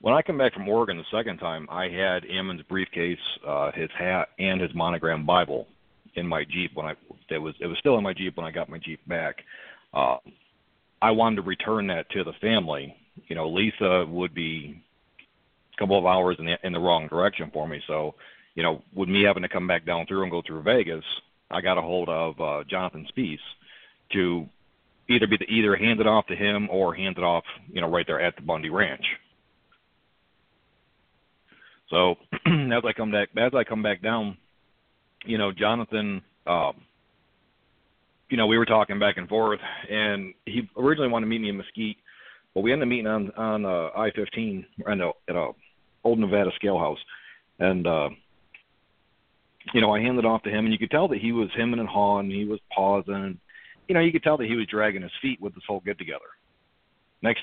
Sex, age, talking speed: male, 40-59, 205 wpm